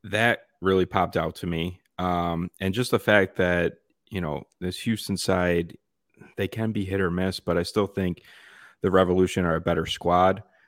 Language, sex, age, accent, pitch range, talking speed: English, male, 30-49, American, 85-95 Hz, 185 wpm